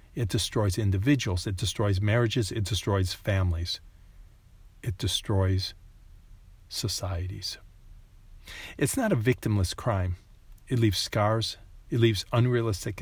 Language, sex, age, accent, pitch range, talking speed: English, male, 50-69, American, 95-120 Hz, 105 wpm